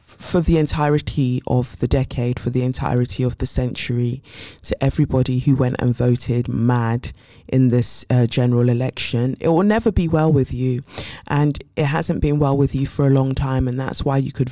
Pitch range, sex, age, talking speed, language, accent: 125-170 Hz, female, 20-39, 195 wpm, English, British